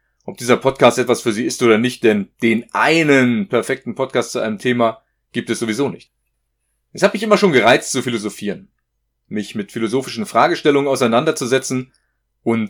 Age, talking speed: 40-59, 165 wpm